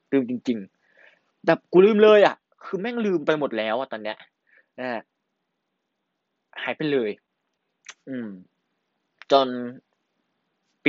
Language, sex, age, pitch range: Thai, male, 20-39, 125-175 Hz